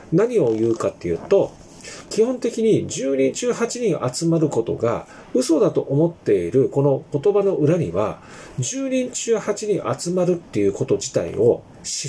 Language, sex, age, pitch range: Japanese, male, 40-59, 140-235 Hz